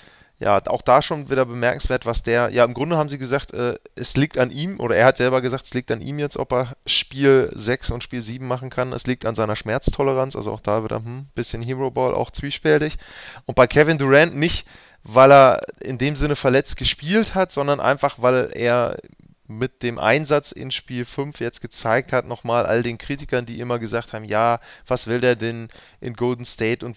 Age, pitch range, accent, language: 20-39, 120-140 Hz, German, German